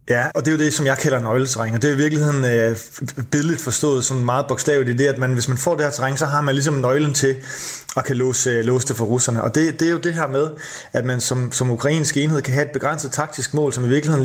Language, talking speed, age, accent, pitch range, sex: Danish, 280 wpm, 30-49, native, 125-150 Hz, male